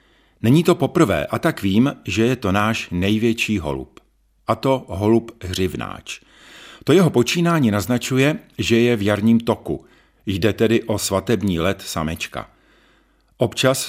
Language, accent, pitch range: Czech, native, 90-120 Hz